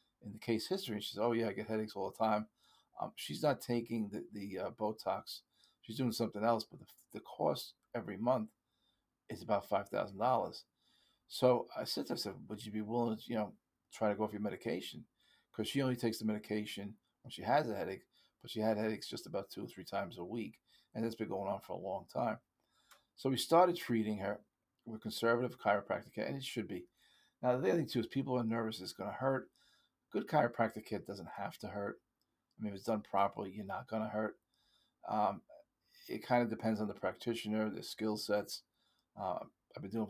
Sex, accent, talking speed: male, American, 215 wpm